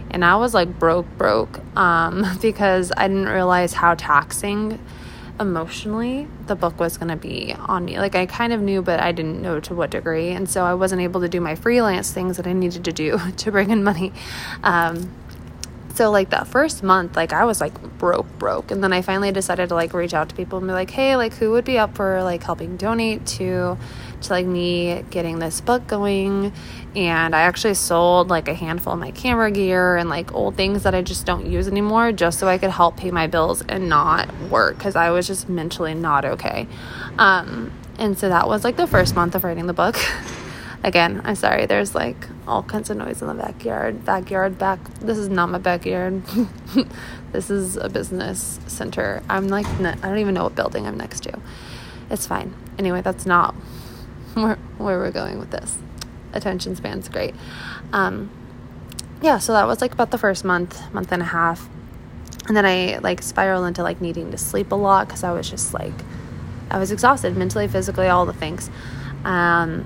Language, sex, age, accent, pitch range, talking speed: English, female, 20-39, American, 170-200 Hz, 205 wpm